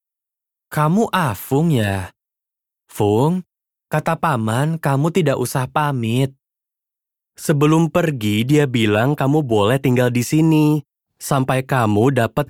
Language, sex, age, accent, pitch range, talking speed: Indonesian, male, 20-39, native, 115-155 Hz, 105 wpm